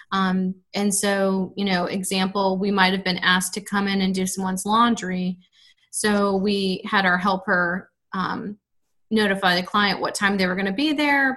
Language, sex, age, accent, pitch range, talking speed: English, female, 30-49, American, 190-215 Hz, 180 wpm